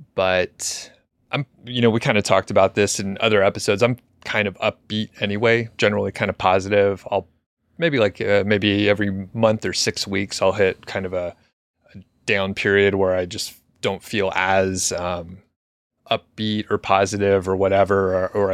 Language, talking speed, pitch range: English, 175 wpm, 95-105 Hz